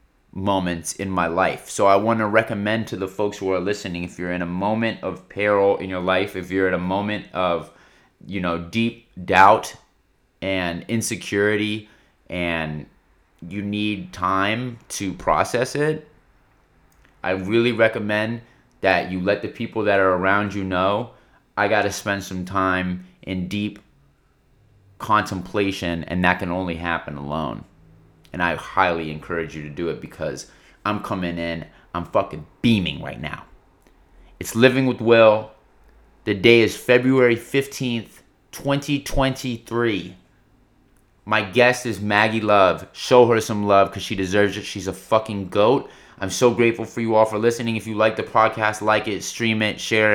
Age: 30-49